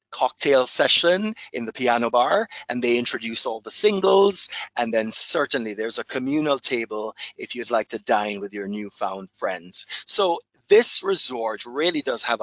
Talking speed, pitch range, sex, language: 165 wpm, 110-170 Hz, male, English